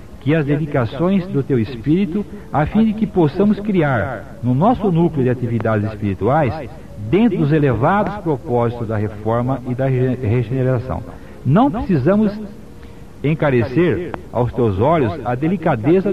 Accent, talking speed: Brazilian, 130 wpm